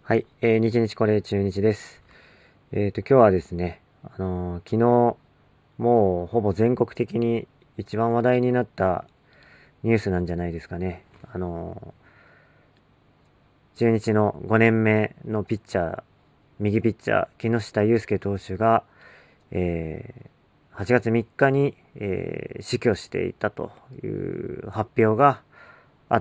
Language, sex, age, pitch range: Japanese, male, 40-59, 100-125 Hz